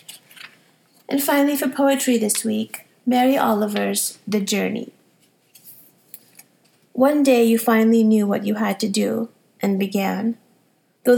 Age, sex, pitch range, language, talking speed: 30-49, female, 210-235 Hz, English, 125 wpm